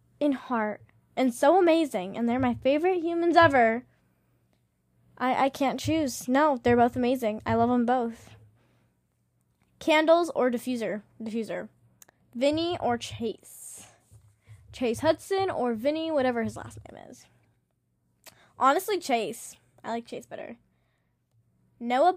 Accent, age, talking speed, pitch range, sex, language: American, 10-29, 125 wpm, 220-300 Hz, female, English